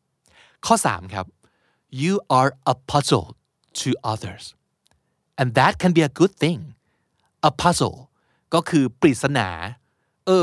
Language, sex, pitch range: Thai, male, 110-165 Hz